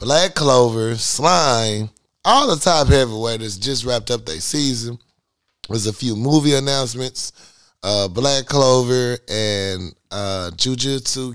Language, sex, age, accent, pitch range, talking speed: English, male, 30-49, American, 95-145 Hz, 120 wpm